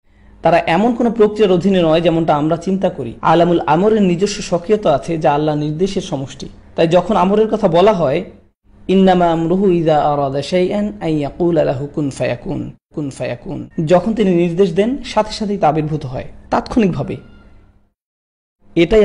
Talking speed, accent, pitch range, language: 120 wpm, native, 140-195 Hz, Bengali